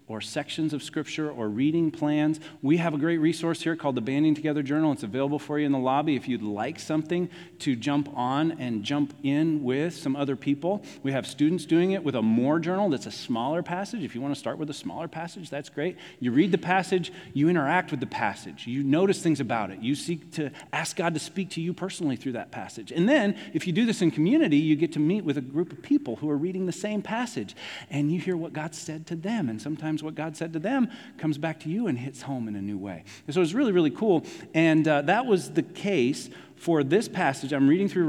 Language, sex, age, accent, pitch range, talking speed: English, male, 40-59, American, 135-170 Hz, 250 wpm